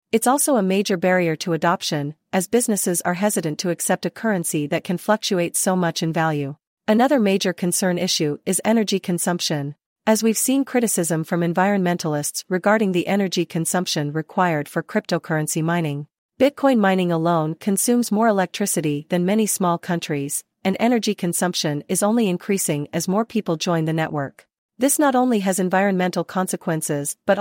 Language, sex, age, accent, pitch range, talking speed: English, female, 40-59, American, 165-210 Hz, 160 wpm